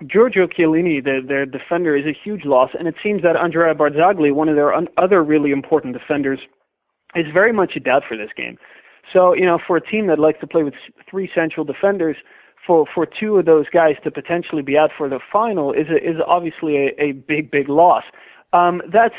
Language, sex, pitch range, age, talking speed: English, male, 150-175 Hz, 30-49, 215 wpm